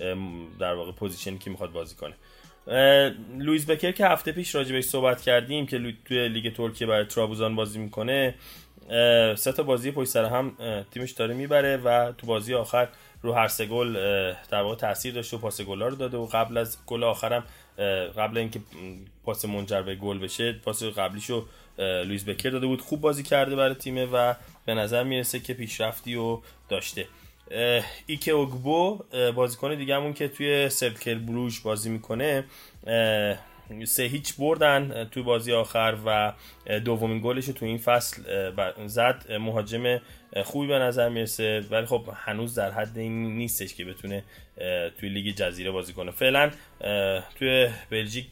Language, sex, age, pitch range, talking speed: Persian, male, 20-39, 105-130 Hz, 150 wpm